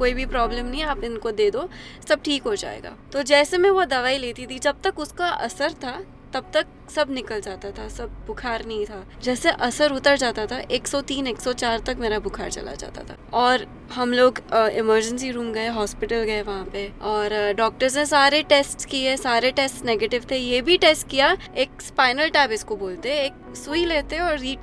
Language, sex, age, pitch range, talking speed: Hindi, female, 20-39, 235-300 Hz, 165 wpm